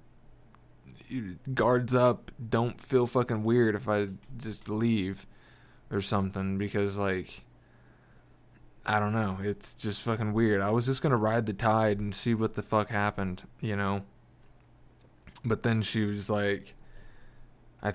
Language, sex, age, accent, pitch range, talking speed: English, male, 20-39, American, 100-125 Hz, 145 wpm